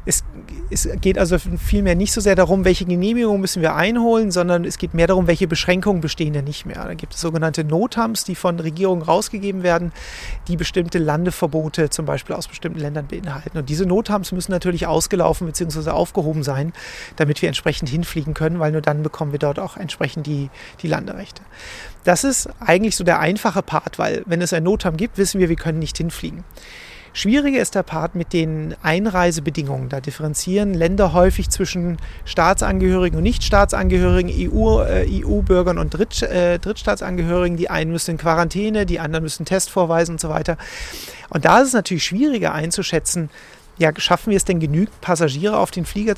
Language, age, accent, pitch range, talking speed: German, 40-59, German, 160-190 Hz, 180 wpm